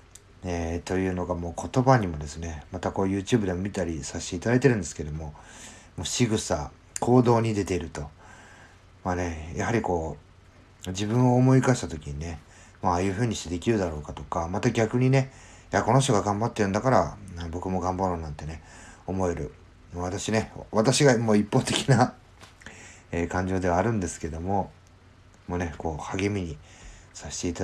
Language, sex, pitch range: Japanese, male, 85-105 Hz